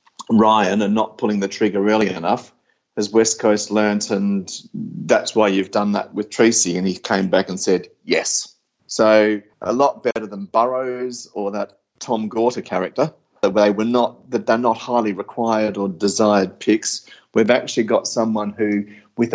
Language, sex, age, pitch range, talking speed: English, male, 30-49, 100-120 Hz, 175 wpm